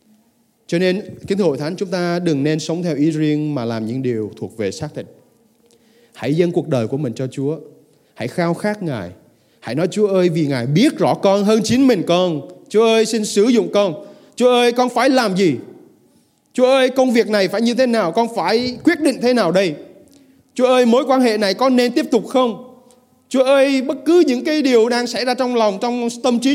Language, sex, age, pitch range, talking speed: Vietnamese, male, 20-39, 170-250 Hz, 225 wpm